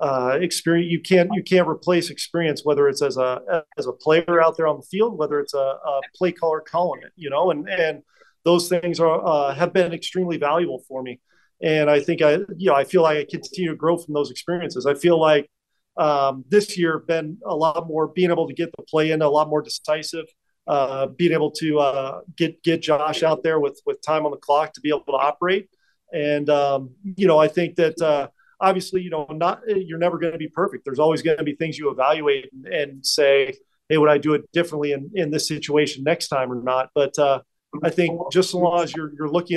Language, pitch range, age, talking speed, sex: English, 150-175 Hz, 40-59, 235 wpm, male